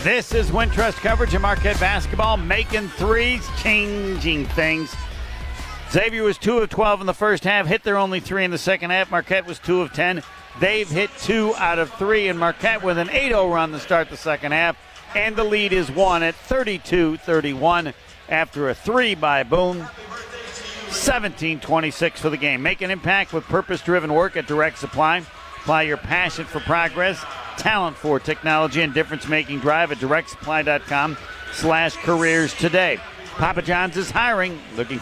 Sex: male